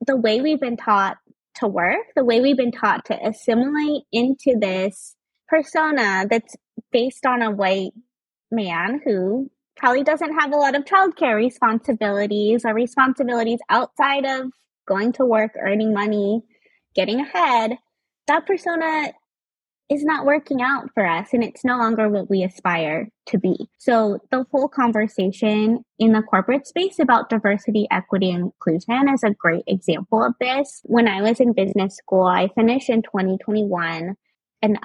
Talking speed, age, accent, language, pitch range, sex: 155 wpm, 20-39, American, English, 200-270 Hz, female